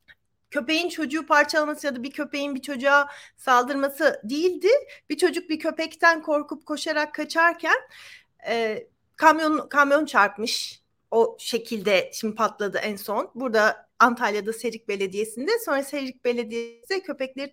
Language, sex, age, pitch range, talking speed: Turkish, female, 40-59, 225-335 Hz, 125 wpm